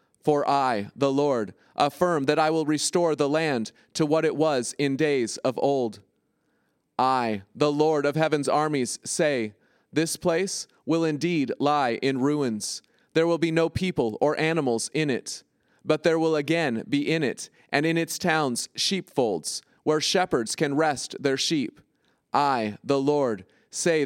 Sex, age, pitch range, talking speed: male, 30-49, 140-160 Hz, 160 wpm